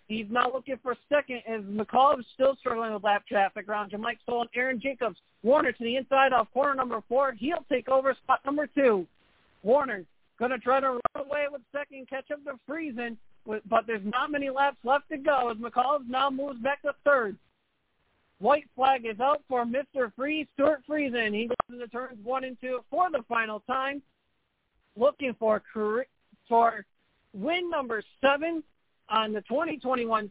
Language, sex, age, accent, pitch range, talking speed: English, male, 50-69, American, 215-275 Hz, 180 wpm